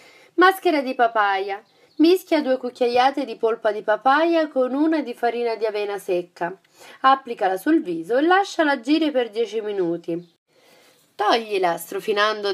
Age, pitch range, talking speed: 30-49, 210-325 Hz, 135 wpm